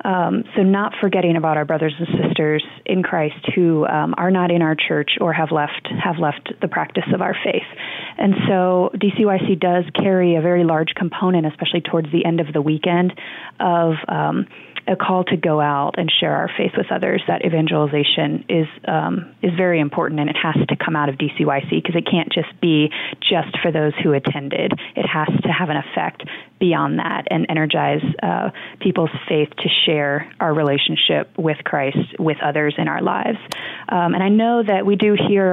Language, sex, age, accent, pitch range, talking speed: English, female, 30-49, American, 160-190 Hz, 195 wpm